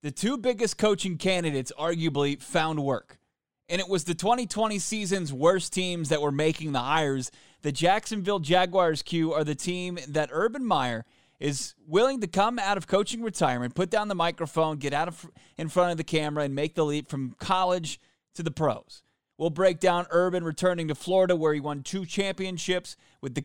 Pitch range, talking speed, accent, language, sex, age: 145-185 Hz, 185 wpm, American, English, male, 30-49